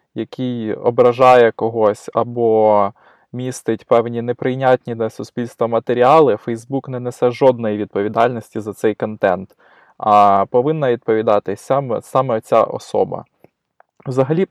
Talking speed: 110 wpm